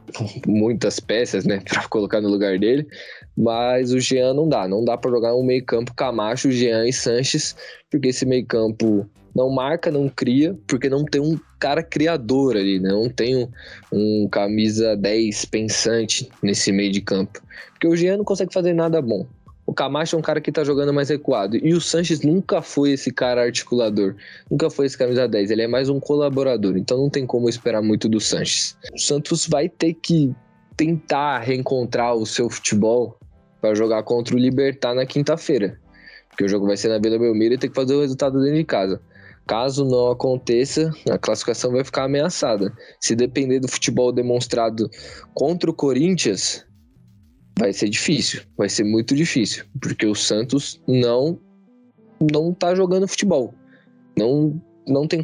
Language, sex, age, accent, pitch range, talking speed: Portuguese, male, 20-39, Brazilian, 115-150 Hz, 175 wpm